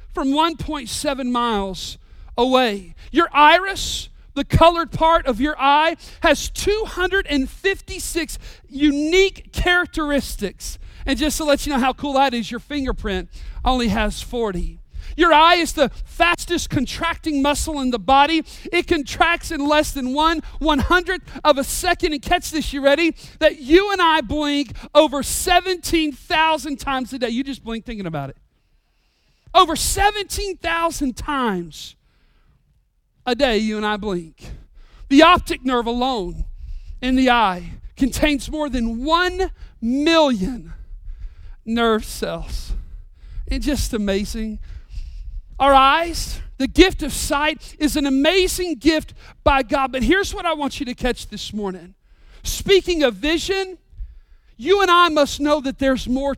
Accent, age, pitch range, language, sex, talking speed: American, 40-59, 240-330 Hz, English, male, 140 wpm